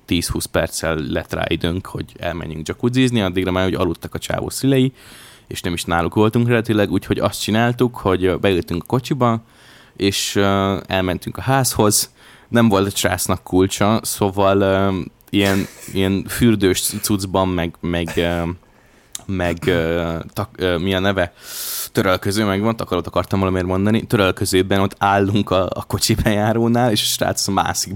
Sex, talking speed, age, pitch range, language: male, 150 wpm, 20-39, 90-115 Hz, Hungarian